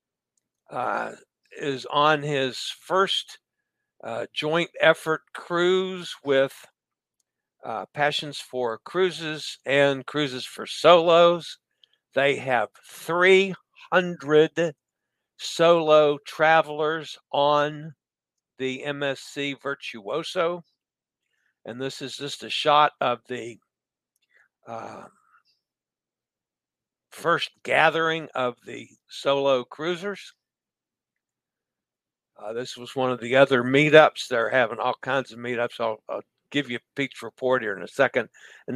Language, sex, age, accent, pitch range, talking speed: English, male, 60-79, American, 130-155 Hz, 105 wpm